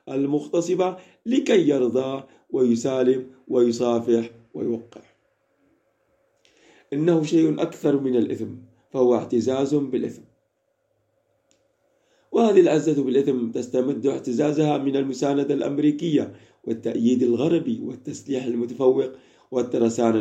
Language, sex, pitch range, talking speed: Arabic, male, 120-145 Hz, 75 wpm